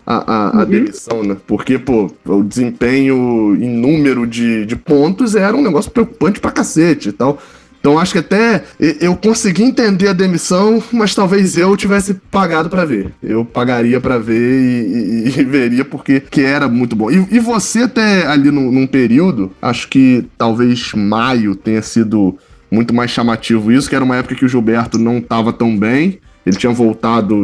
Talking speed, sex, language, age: 175 wpm, male, Portuguese, 20-39